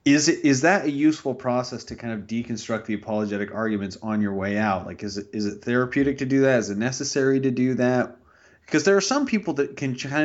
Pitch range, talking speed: 105-130 Hz, 240 wpm